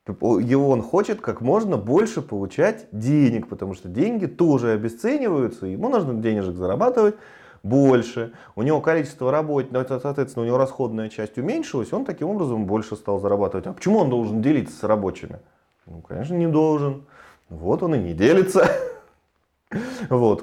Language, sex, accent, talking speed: Russian, male, native, 150 wpm